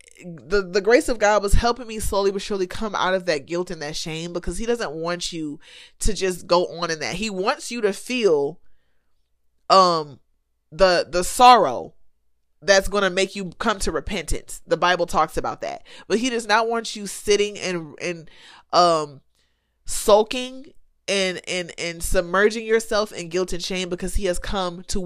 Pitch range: 160-205 Hz